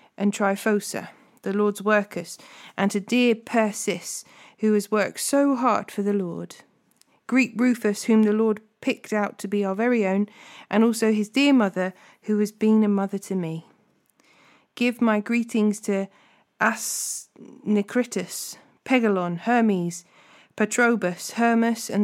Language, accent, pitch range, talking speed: English, British, 200-235 Hz, 140 wpm